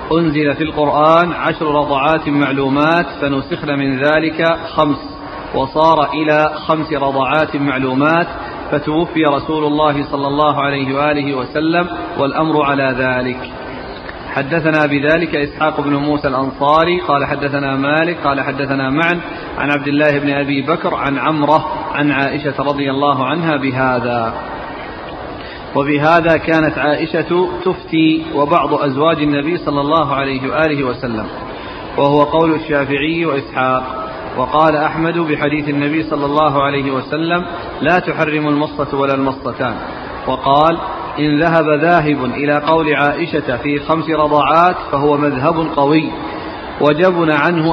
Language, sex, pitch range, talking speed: Arabic, male, 140-160 Hz, 120 wpm